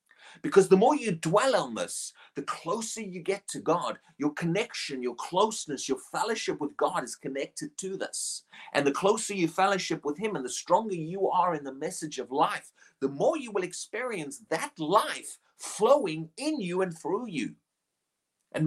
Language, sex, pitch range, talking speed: English, male, 160-210 Hz, 180 wpm